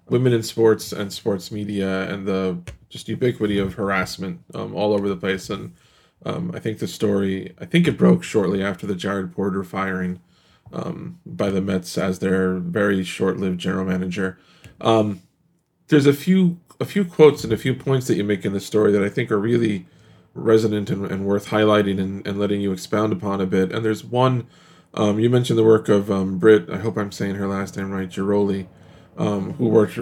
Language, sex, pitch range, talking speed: English, male, 100-120 Hz, 200 wpm